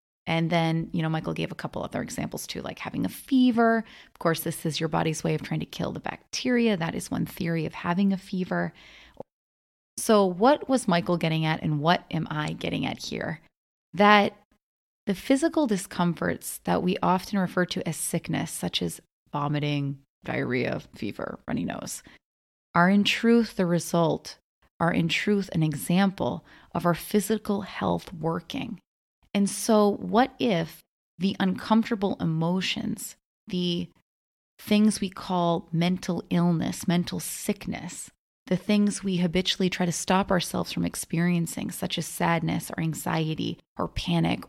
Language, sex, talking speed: English, female, 155 wpm